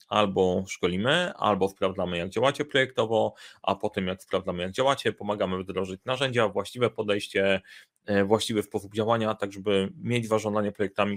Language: Polish